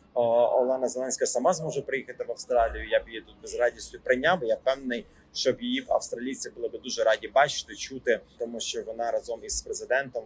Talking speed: 185 wpm